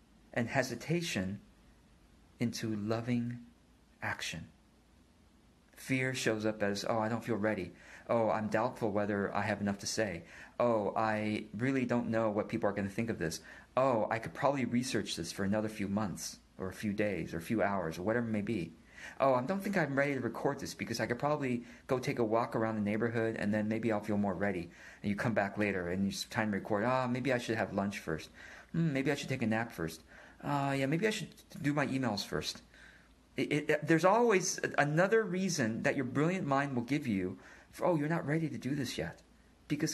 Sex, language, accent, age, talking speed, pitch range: male, English, American, 40-59, 215 wpm, 110-140 Hz